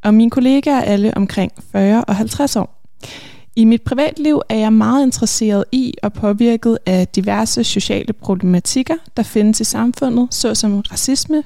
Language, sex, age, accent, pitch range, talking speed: Danish, female, 20-39, native, 205-240 Hz, 155 wpm